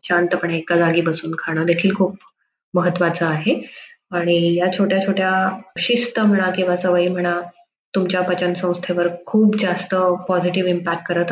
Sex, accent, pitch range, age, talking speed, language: female, native, 170-185 Hz, 20-39, 140 wpm, Marathi